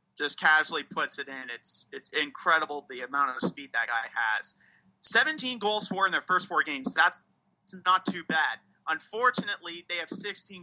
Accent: American